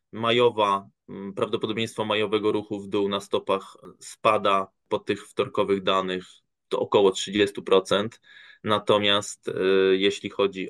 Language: Polish